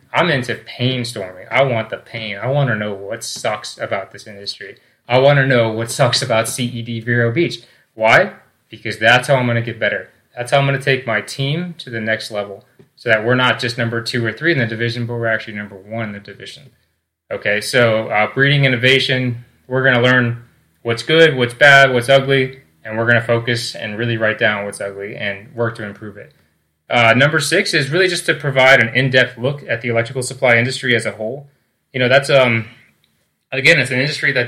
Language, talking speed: English, 220 wpm